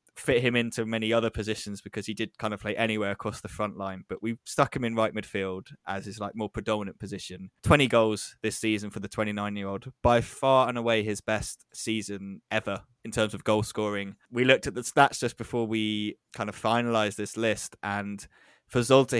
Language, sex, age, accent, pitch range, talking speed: English, male, 10-29, British, 105-120 Hz, 205 wpm